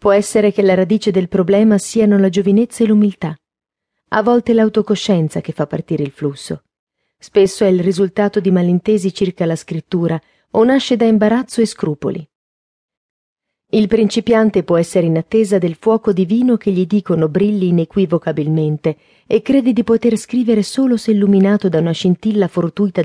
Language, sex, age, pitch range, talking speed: Italian, female, 40-59, 170-220 Hz, 160 wpm